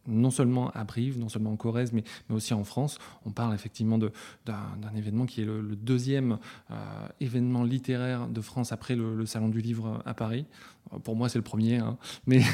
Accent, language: French, French